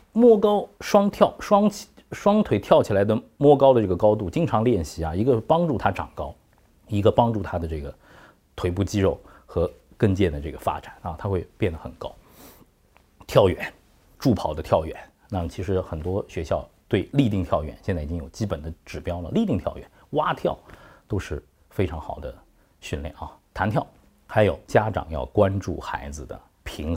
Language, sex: Chinese, male